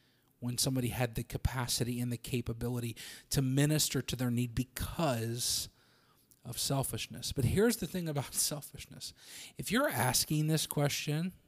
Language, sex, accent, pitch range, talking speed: English, male, American, 120-140 Hz, 140 wpm